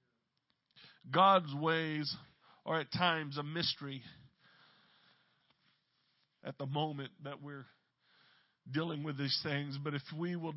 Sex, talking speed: male, 115 wpm